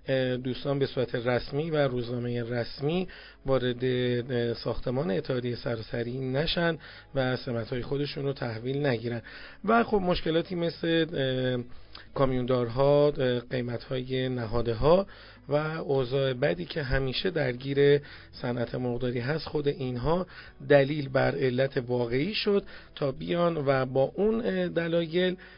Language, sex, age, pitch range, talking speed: Persian, male, 40-59, 125-160 Hz, 110 wpm